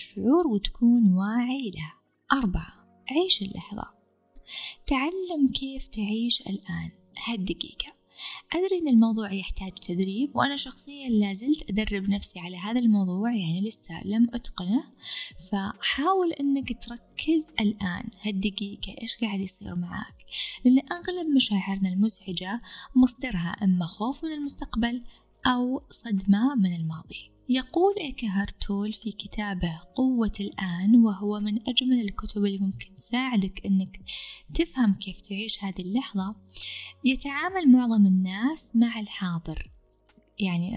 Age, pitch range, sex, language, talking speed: 20-39, 195-255 Hz, female, Arabic, 110 wpm